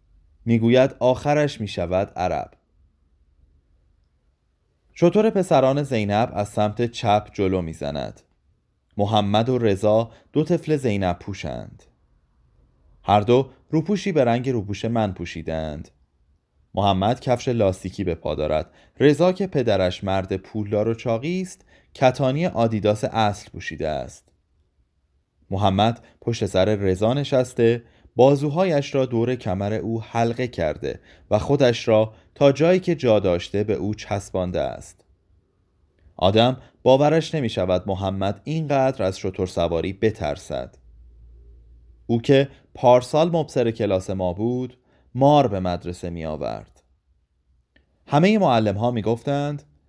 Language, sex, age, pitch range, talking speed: Persian, male, 30-49, 85-125 Hz, 115 wpm